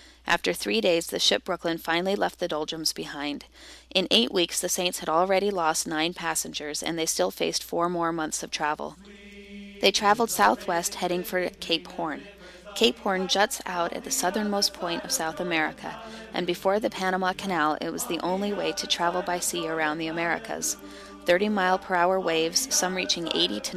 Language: English